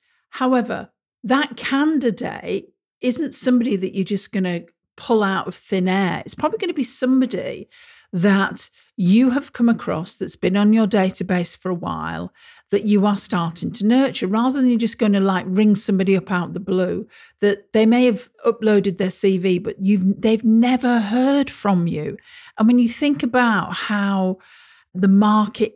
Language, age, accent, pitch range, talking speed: English, 50-69, British, 195-235 Hz, 175 wpm